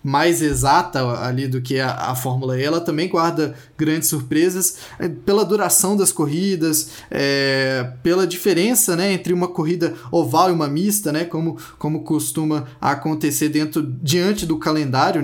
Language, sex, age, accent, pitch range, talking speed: Portuguese, male, 20-39, Brazilian, 140-170 Hz, 150 wpm